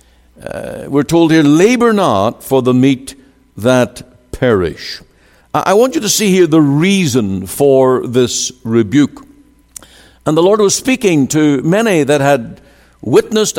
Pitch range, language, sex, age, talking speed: 115-165 Hz, English, male, 60-79, 140 wpm